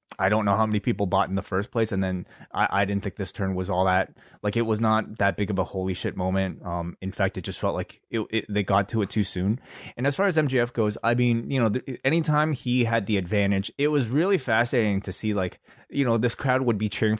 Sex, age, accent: male, 20-39, American